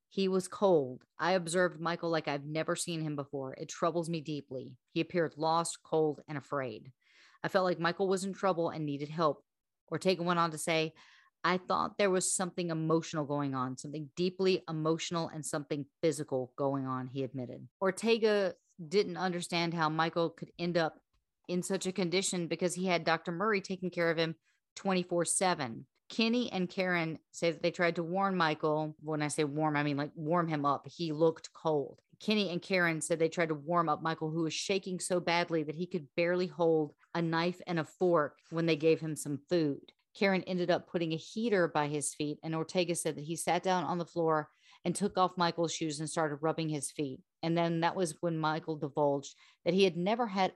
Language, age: English, 40-59